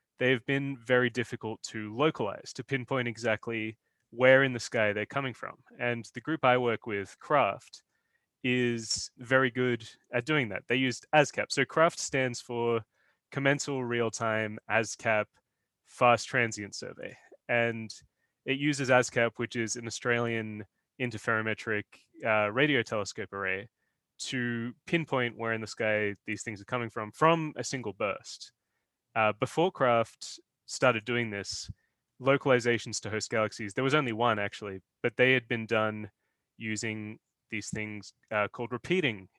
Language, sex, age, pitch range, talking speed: English, male, 20-39, 110-130 Hz, 145 wpm